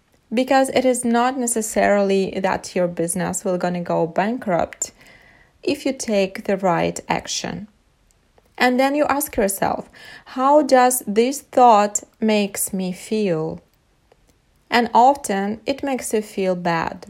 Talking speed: 135 wpm